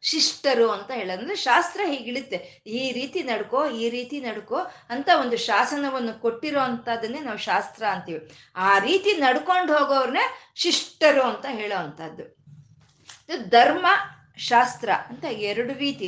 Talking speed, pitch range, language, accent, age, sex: 120 wpm, 210-280 Hz, Kannada, native, 20-39, female